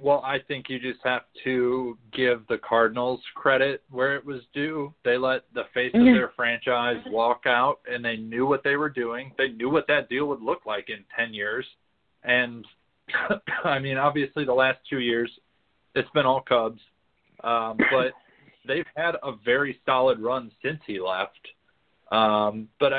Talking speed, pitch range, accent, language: 175 wpm, 115-140 Hz, American, English